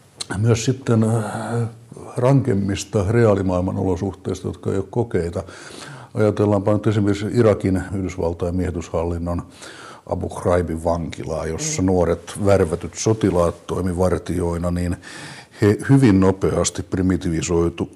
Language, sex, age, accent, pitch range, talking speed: Finnish, male, 60-79, native, 85-100 Hz, 95 wpm